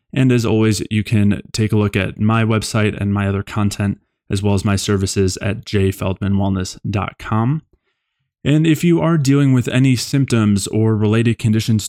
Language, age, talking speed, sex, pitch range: English, 20-39, 165 wpm, male, 100-115 Hz